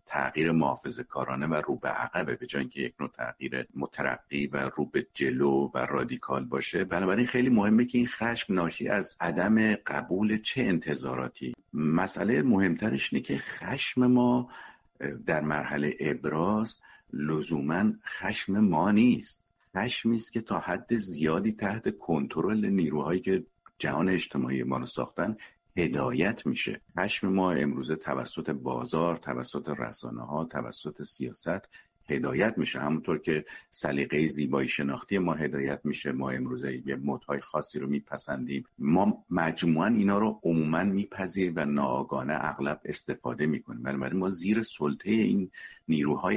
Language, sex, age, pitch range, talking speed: Persian, male, 50-69, 70-95 Hz, 135 wpm